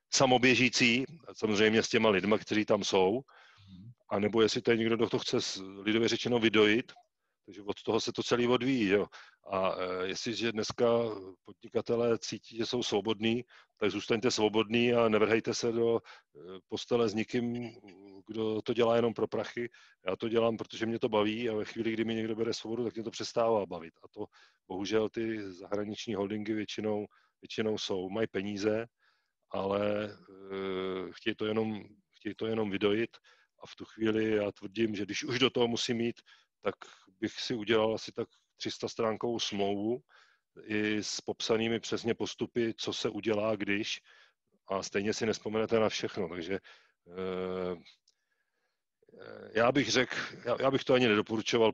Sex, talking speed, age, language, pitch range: male, 160 wpm, 40-59, Czech, 105-115 Hz